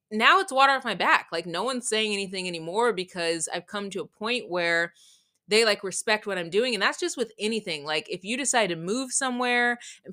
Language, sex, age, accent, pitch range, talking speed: English, female, 20-39, American, 185-240 Hz, 225 wpm